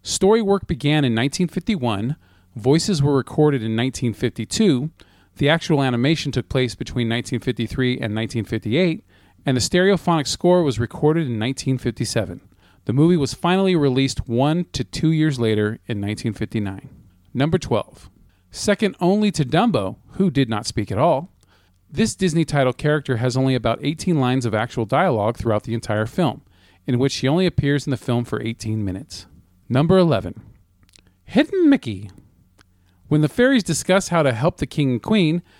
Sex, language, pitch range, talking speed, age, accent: male, English, 110-160 Hz, 155 wpm, 40-59, American